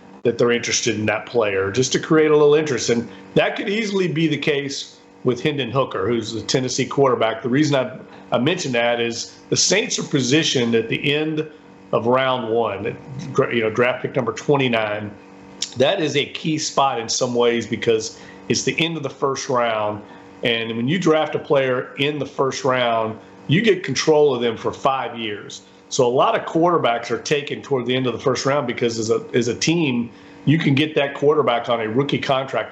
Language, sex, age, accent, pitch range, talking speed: English, male, 40-59, American, 120-155 Hz, 205 wpm